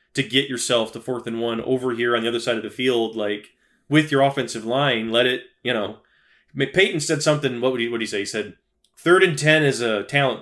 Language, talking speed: English, 240 wpm